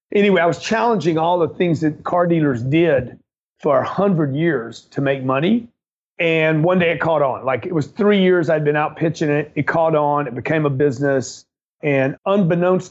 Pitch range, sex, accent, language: 145-165 Hz, male, American, English